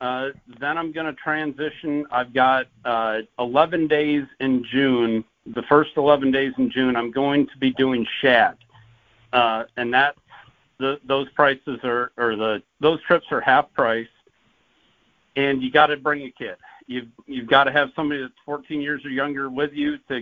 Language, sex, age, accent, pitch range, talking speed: English, male, 50-69, American, 120-140 Hz, 180 wpm